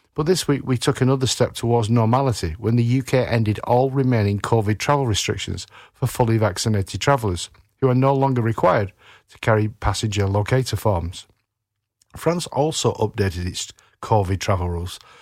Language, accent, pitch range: English, British, 100-130 Hz